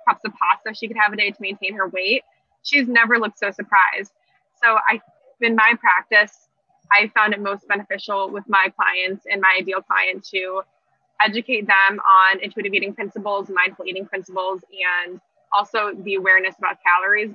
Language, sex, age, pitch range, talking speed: English, female, 20-39, 190-220 Hz, 175 wpm